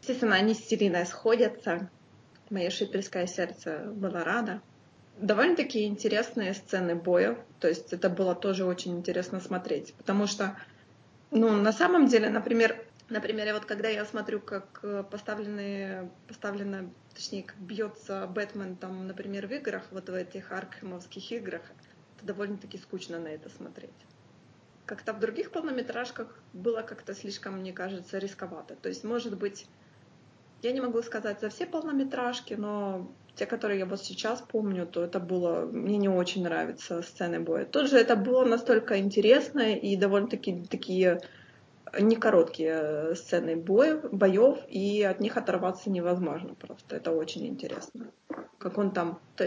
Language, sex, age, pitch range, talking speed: Russian, female, 20-39, 185-225 Hz, 145 wpm